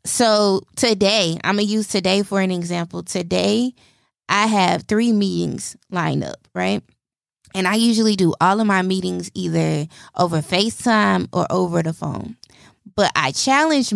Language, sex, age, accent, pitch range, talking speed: English, female, 20-39, American, 175-225 Hz, 155 wpm